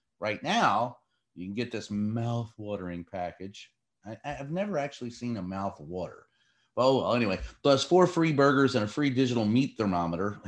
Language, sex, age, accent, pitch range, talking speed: English, male, 30-49, American, 110-145 Hz, 155 wpm